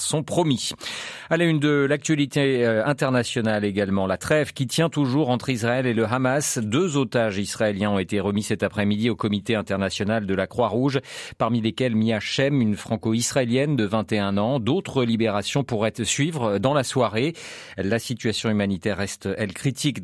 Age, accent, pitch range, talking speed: 40-59, French, 105-140 Hz, 160 wpm